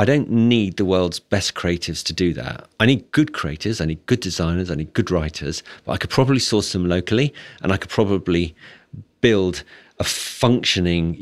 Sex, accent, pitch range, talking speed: male, British, 85-110 Hz, 195 wpm